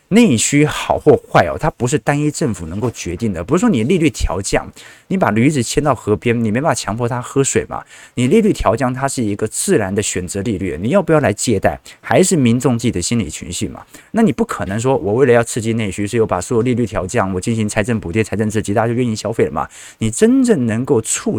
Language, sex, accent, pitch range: Chinese, male, native, 105-135 Hz